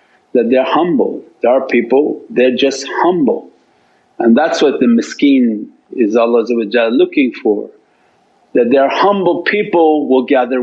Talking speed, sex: 135 wpm, male